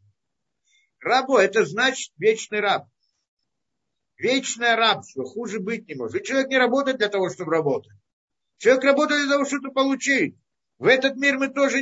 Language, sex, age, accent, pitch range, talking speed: Russian, male, 50-69, native, 195-265 Hz, 150 wpm